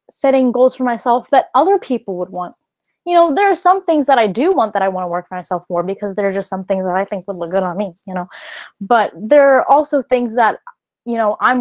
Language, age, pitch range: English, 20-39, 215-305 Hz